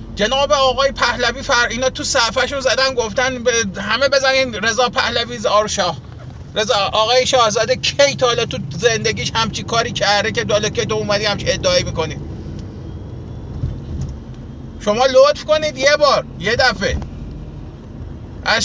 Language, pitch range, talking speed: Persian, 185-270 Hz, 130 wpm